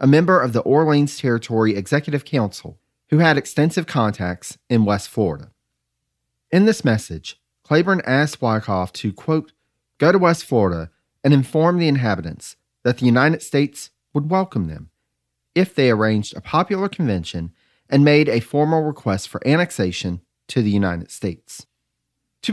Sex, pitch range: male, 100-155 Hz